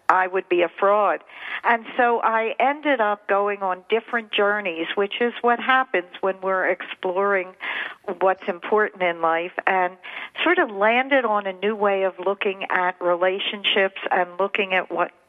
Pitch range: 185-240 Hz